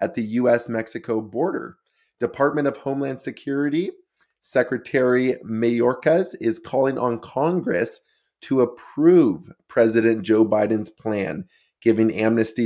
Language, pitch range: English, 110-140 Hz